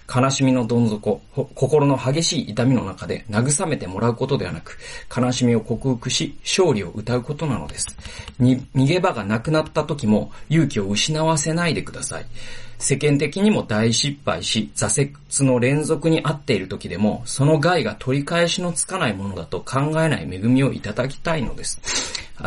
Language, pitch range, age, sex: Japanese, 115-145 Hz, 40-59, male